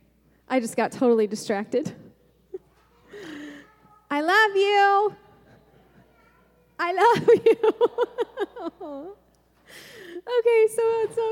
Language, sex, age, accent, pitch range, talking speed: English, female, 30-49, American, 230-350 Hz, 75 wpm